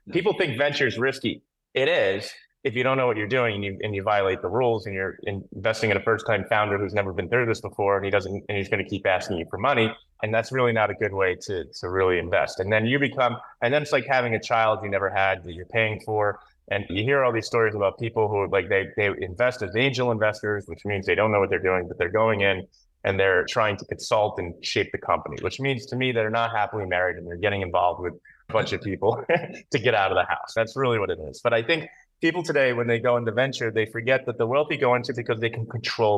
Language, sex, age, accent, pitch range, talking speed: English, male, 20-39, American, 100-135 Hz, 270 wpm